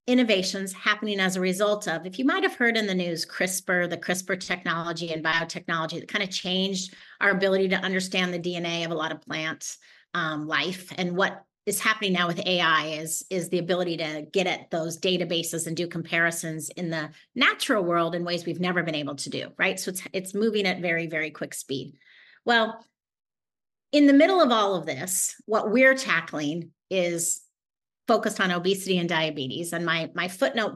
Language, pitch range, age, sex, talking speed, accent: English, 165-200 Hz, 30-49, female, 190 wpm, American